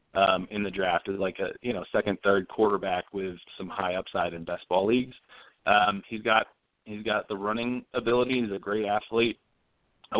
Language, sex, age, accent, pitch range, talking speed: English, male, 20-39, American, 95-110 Hz, 195 wpm